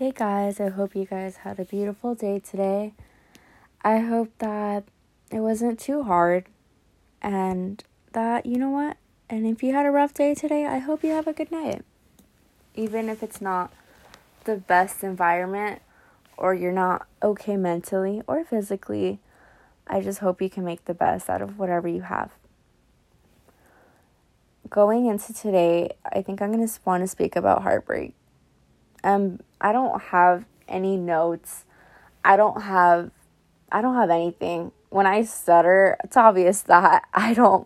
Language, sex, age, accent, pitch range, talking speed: English, female, 20-39, American, 180-225 Hz, 160 wpm